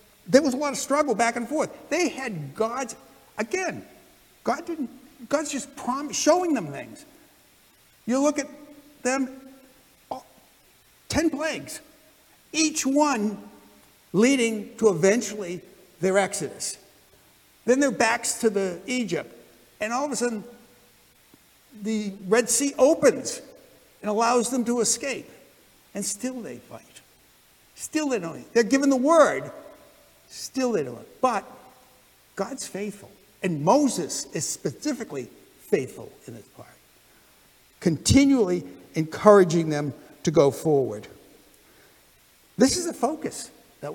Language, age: English, 60-79